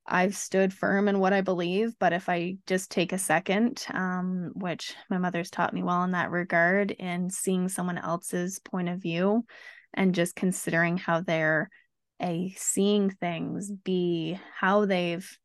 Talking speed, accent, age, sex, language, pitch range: 165 wpm, American, 20-39, female, English, 170-195 Hz